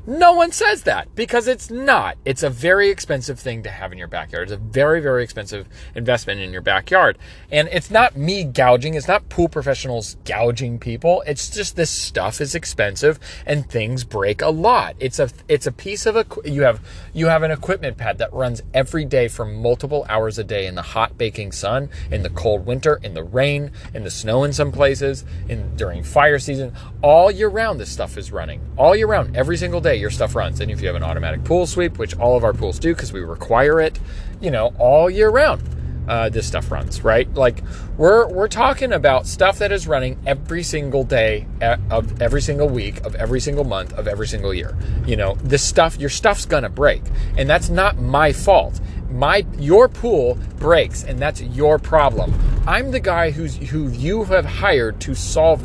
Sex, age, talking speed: male, 30-49, 205 wpm